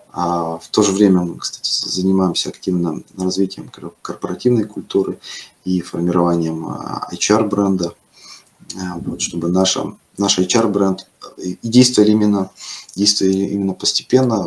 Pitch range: 90-105 Hz